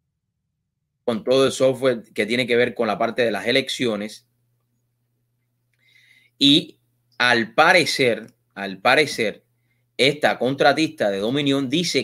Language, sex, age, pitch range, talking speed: English, male, 30-49, 120-155 Hz, 120 wpm